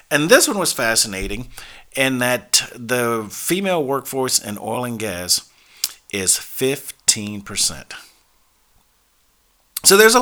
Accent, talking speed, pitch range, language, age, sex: American, 110 wpm, 115-135 Hz, English, 40-59, male